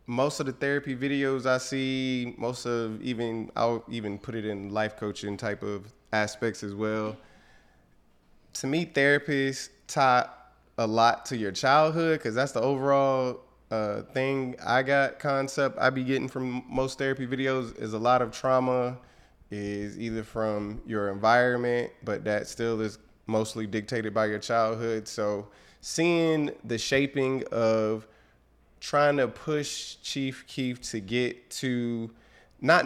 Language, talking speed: English, 145 wpm